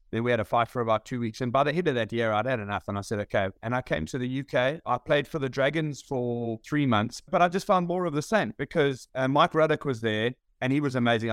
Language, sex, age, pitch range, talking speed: English, male, 30-49, 115-150 Hz, 290 wpm